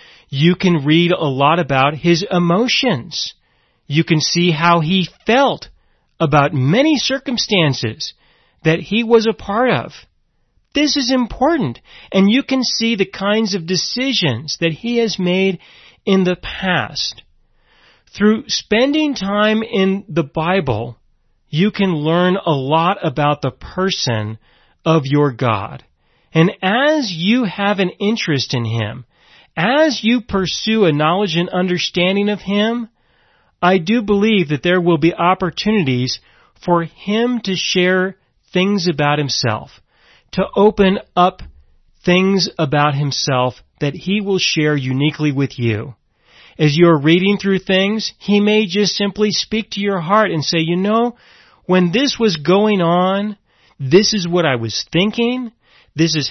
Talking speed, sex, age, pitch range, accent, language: 140 wpm, male, 40-59, 150-210 Hz, American, English